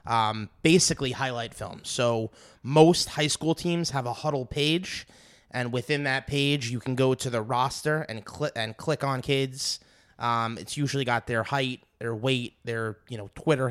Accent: American